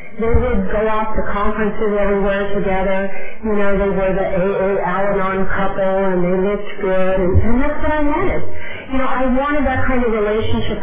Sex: female